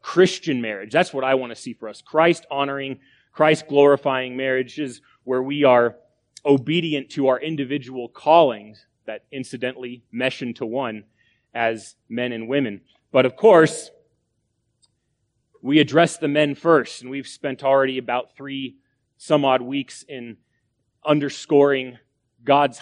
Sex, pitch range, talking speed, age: male, 130-160 Hz, 130 wpm, 30-49